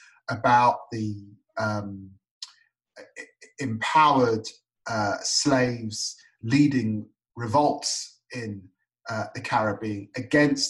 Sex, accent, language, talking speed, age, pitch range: male, British, English, 75 wpm, 30-49, 125-165 Hz